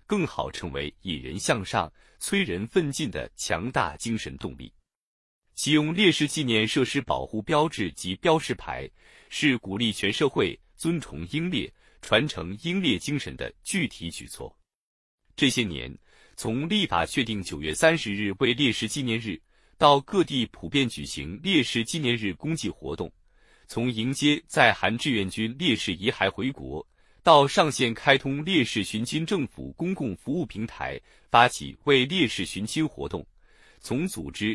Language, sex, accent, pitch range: Chinese, male, native, 100-150 Hz